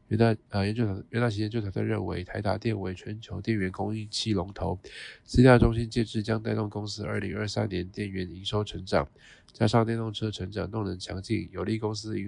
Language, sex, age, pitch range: Chinese, male, 20-39, 100-110 Hz